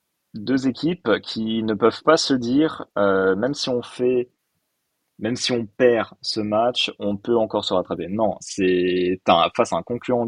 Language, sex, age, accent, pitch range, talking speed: French, male, 30-49, French, 95-120 Hz, 180 wpm